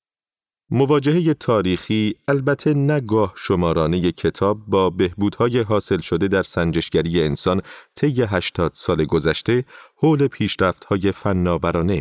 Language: Persian